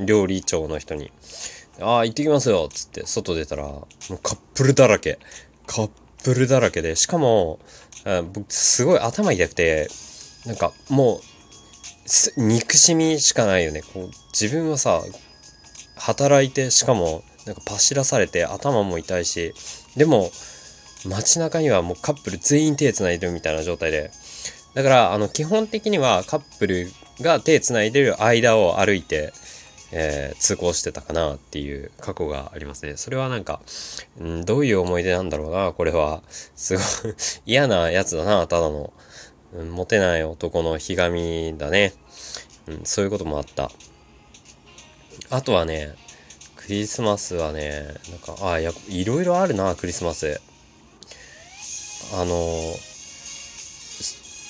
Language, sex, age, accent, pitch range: Japanese, male, 20-39, native, 80-120 Hz